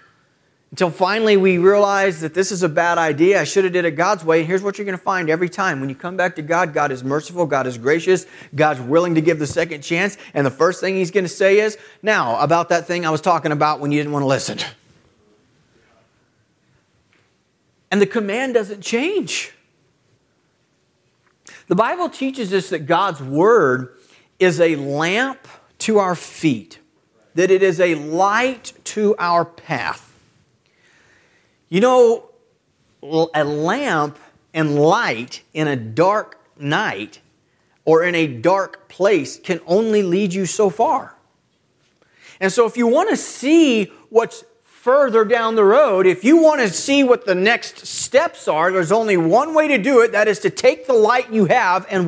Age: 40-59